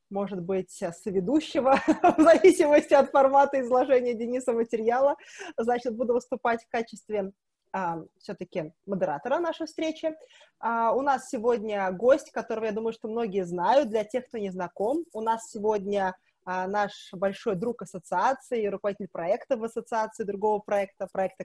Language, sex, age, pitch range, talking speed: Russian, female, 20-39, 210-280 Hz, 145 wpm